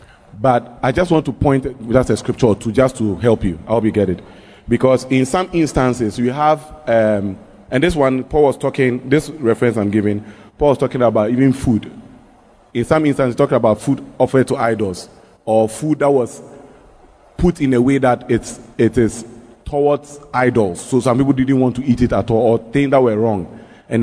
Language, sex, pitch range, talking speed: English, male, 110-135 Hz, 205 wpm